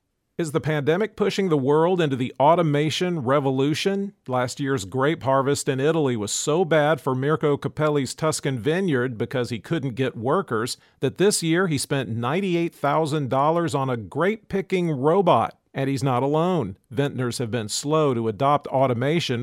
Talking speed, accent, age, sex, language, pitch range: 155 wpm, American, 40-59, male, English, 125-155 Hz